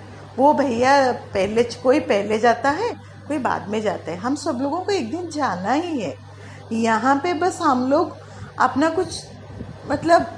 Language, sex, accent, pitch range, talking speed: Hindi, female, native, 245-365 Hz, 170 wpm